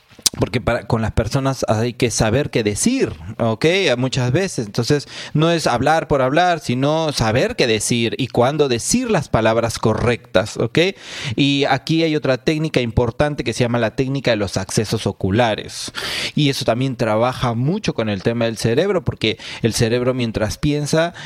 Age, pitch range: 30-49, 120-145 Hz